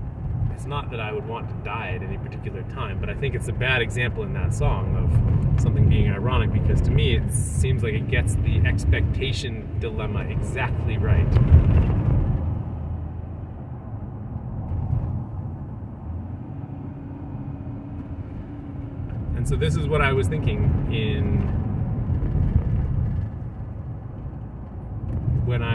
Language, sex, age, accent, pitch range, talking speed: English, male, 30-49, American, 100-120 Hz, 110 wpm